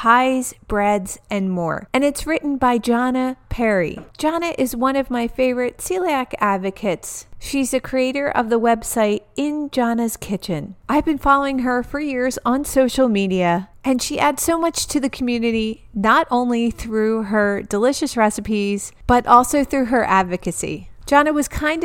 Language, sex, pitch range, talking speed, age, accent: English, female, 215-280 Hz, 160 wpm, 40-59, American